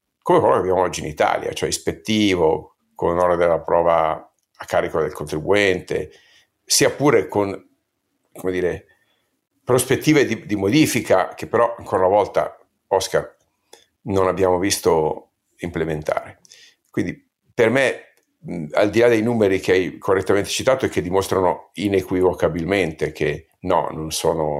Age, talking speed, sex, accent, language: 50-69, 135 wpm, male, native, Italian